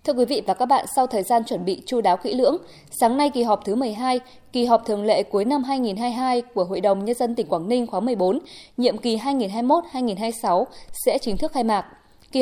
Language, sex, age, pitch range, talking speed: Vietnamese, female, 20-39, 215-270 Hz, 225 wpm